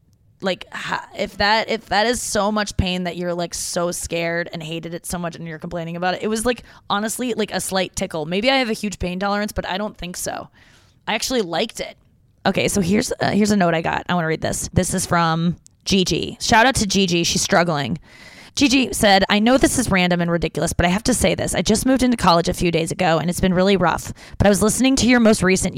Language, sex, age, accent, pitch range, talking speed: English, female, 20-39, American, 170-195 Hz, 255 wpm